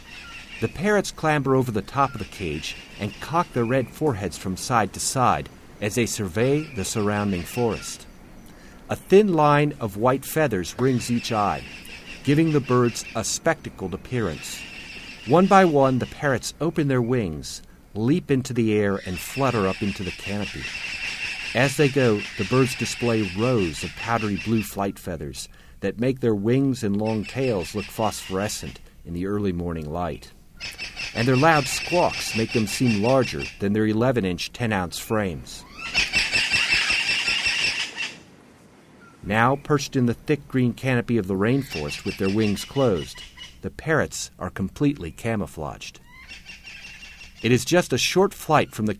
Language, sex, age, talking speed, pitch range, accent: English, male, 50-69, 150 wpm, 95-130 Hz, American